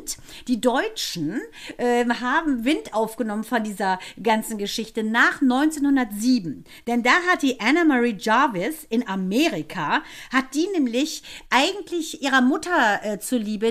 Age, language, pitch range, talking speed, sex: 50-69, German, 225-285 Hz, 125 wpm, female